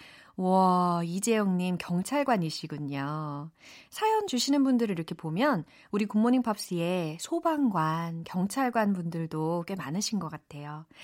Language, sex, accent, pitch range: Korean, female, native, 170-275 Hz